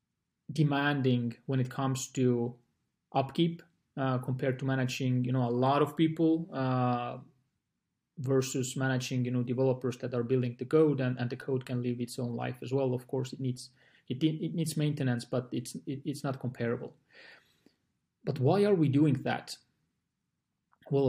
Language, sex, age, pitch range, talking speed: English, male, 30-49, 125-145 Hz, 170 wpm